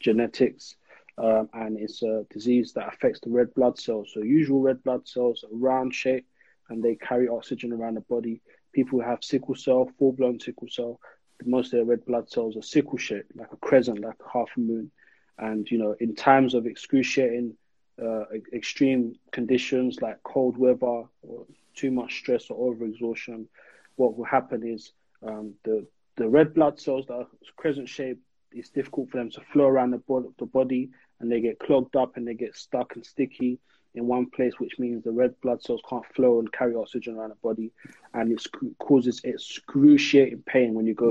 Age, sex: 20-39, male